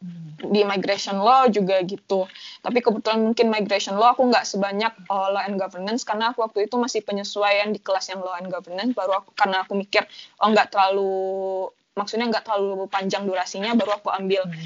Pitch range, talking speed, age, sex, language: 185-210 Hz, 185 wpm, 20-39, female, Indonesian